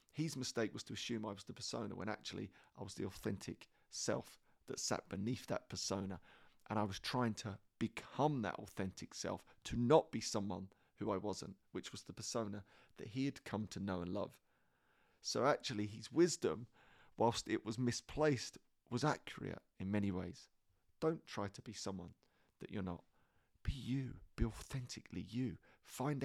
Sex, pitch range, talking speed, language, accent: male, 100-130 Hz, 175 wpm, English, British